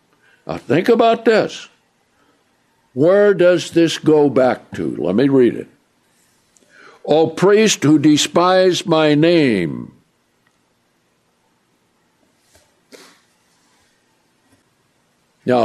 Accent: American